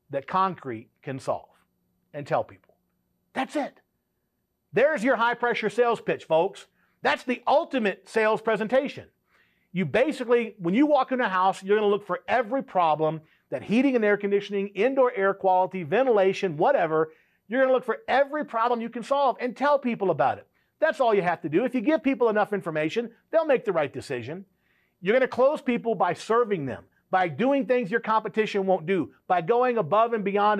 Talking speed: 190 wpm